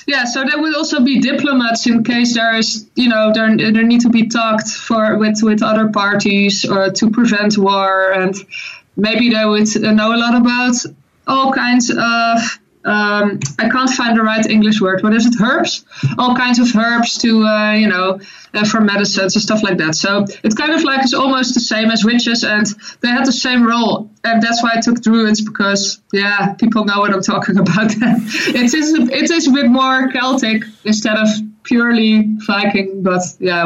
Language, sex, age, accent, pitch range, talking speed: English, female, 20-39, Dutch, 210-245 Hz, 200 wpm